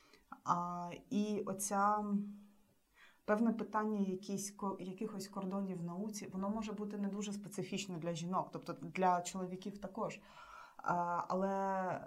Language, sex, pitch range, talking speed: Ukrainian, female, 175-205 Hz, 105 wpm